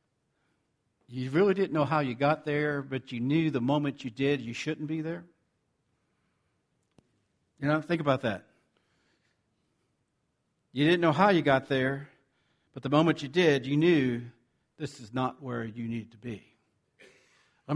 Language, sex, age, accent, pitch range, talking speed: English, male, 60-79, American, 130-185 Hz, 160 wpm